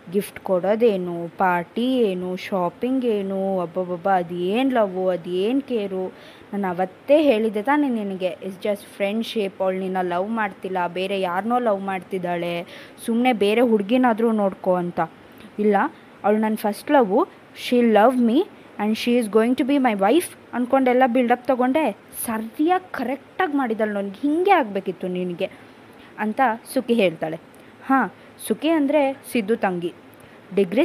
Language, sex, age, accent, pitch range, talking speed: Kannada, female, 20-39, native, 190-255 Hz, 135 wpm